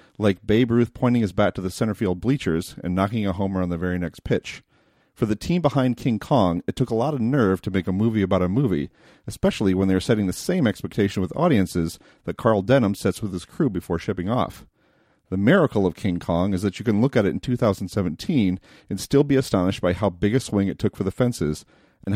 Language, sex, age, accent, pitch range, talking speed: English, male, 40-59, American, 95-125 Hz, 235 wpm